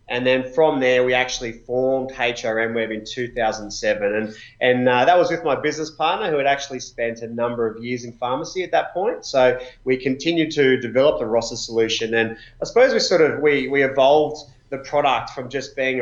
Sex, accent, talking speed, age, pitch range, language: male, Australian, 205 wpm, 20-39, 115-135 Hz, English